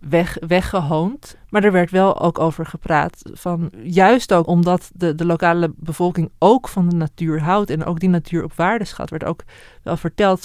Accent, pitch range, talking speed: Dutch, 165-195 Hz, 190 wpm